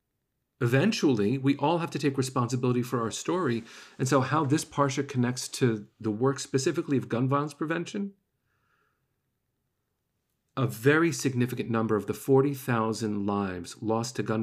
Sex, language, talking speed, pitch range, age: male, English, 145 wpm, 115-140 Hz, 40-59